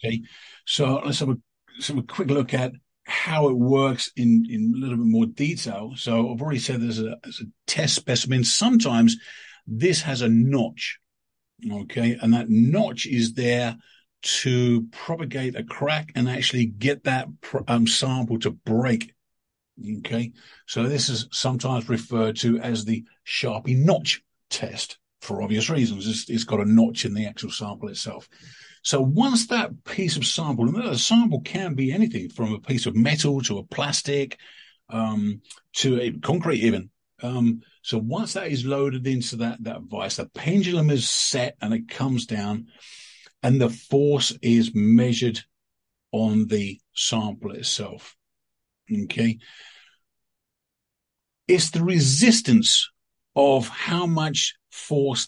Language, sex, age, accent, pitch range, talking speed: English, male, 50-69, British, 115-145 Hz, 150 wpm